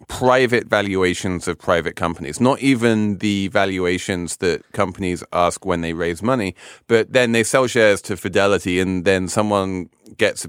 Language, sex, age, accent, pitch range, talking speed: English, male, 30-49, British, 90-125 Hz, 160 wpm